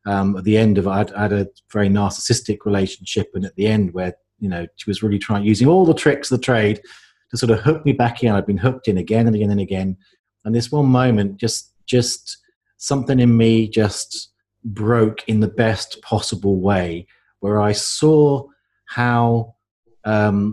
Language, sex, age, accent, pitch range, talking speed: English, male, 40-59, British, 100-120 Hz, 195 wpm